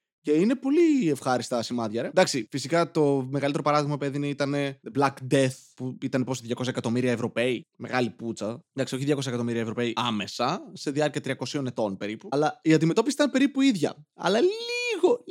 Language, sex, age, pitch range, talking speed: Greek, male, 20-39, 140-185 Hz, 170 wpm